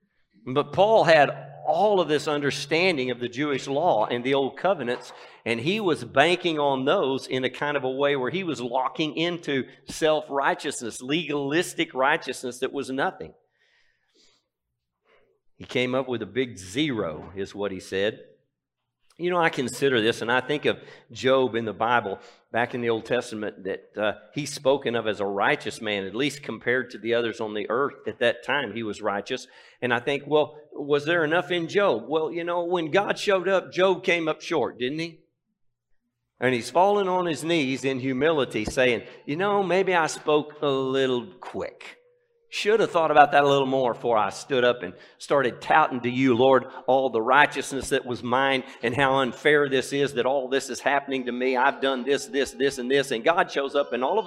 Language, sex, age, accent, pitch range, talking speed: English, male, 50-69, American, 125-170 Hz, 200 wpm